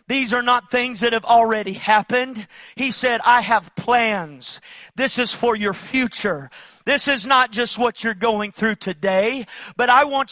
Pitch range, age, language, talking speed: 205-250 Hz, 40-59, English, 175 wpm